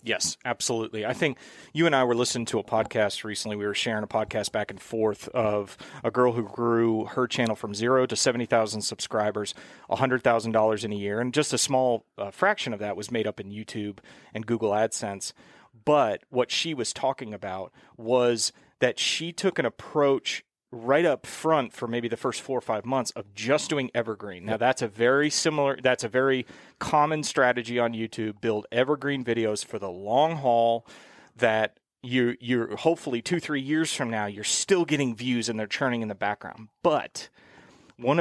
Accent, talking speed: American, 185 wpm